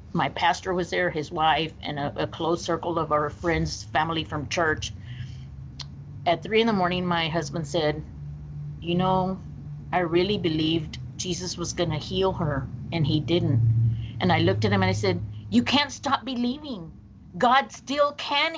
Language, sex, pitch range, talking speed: English, female, 170-235 Hz, 175 wpm